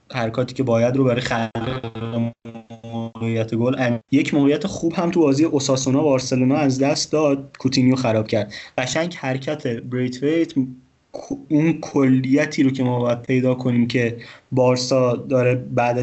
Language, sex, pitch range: Persian, male, 120-140 Hz